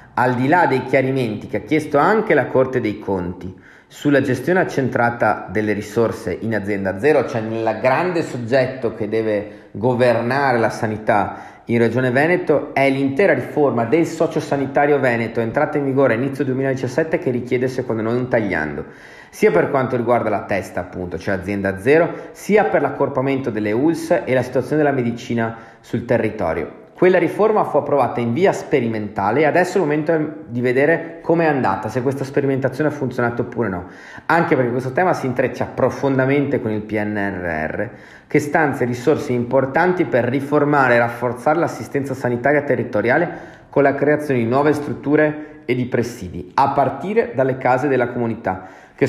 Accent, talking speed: native, 165 wpm